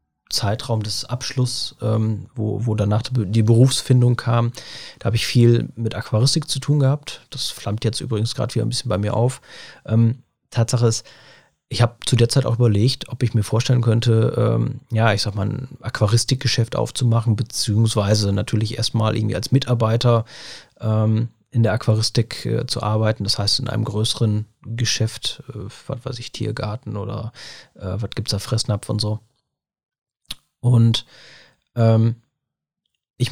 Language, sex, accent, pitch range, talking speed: German, male, German, 110-125 Hz, 160 wpm